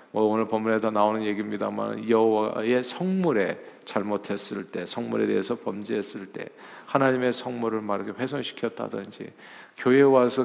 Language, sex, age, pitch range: Korean, male, 40-59, 110-135 Hz